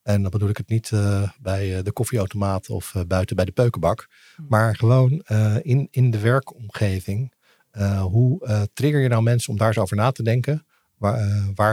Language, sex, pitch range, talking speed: Dutch, male, 100-120 Hz, 195 wpm